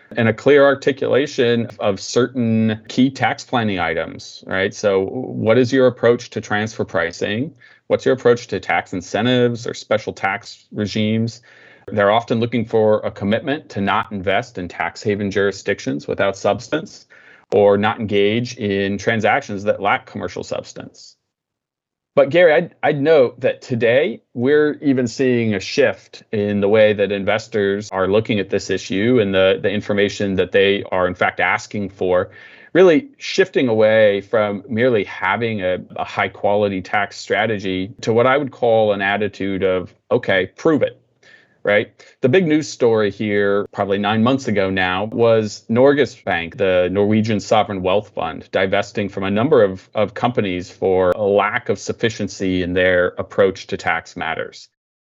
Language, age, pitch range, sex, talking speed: English, 30-49, 100-130 Hz, male, 160 wpm